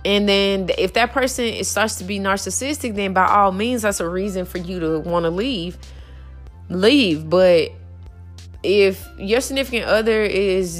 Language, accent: English, American